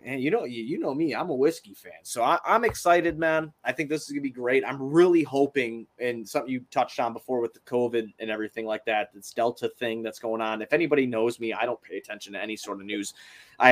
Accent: American